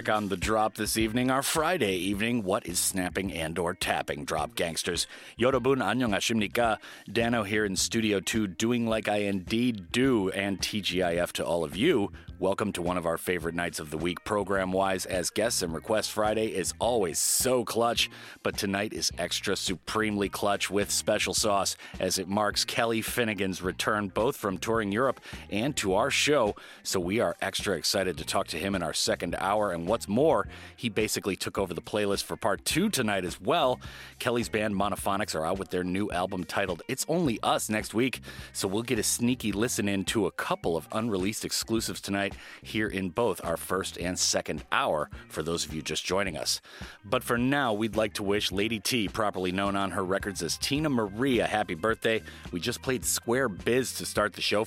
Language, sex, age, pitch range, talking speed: English, male, 30-49, 90-110 Hz, 195 wpm